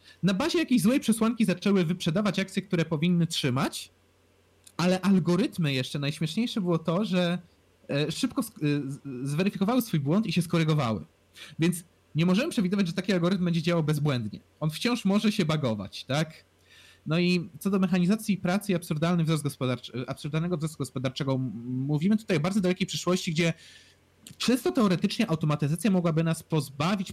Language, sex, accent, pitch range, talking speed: Polish, male, native, 125-180 Hz, 150 wpm